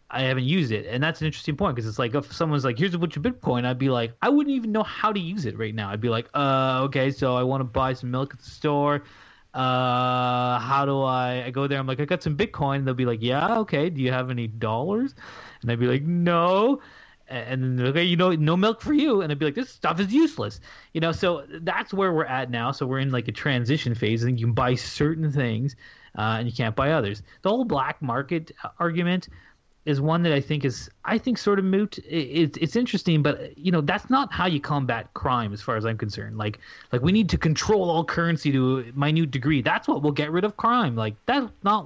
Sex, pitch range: male, 125-170 Hz